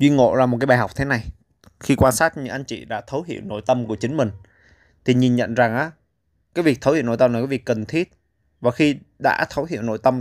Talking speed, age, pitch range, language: 270 wpm, 20-39, 110-135 Hz, Vietnamese